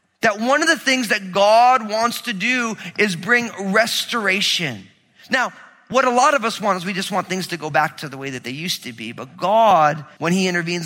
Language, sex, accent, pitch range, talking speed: English, male, American, 170-235 Hz, 225 wpm